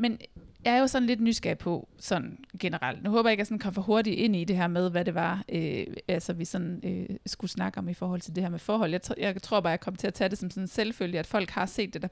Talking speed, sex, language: 310 wpm, female, Danish